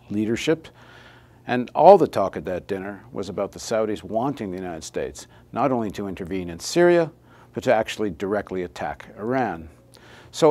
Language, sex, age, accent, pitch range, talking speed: English, male, 50-69, American, 105-155 Hz, 165 wpm